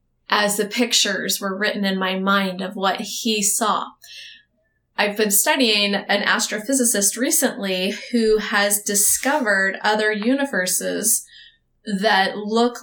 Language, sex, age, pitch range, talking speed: English, female, 20-39, 200-235 Hz, 115 wpm